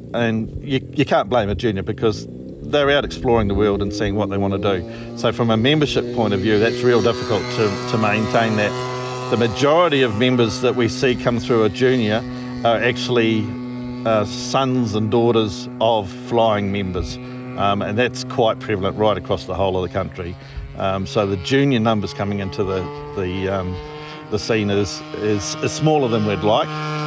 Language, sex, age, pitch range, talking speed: English, male, 50-69, 110-130 Hz, 190 wpm